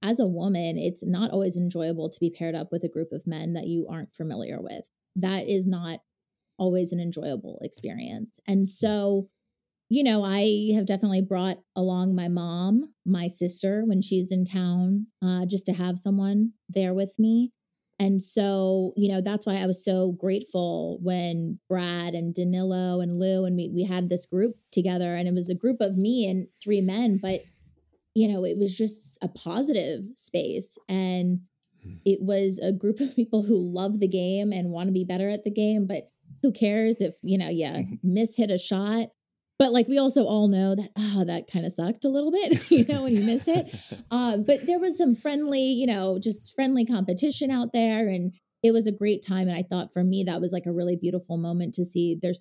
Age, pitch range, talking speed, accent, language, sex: 20-39, 180-215 Hz, 205 wpm, American, English, female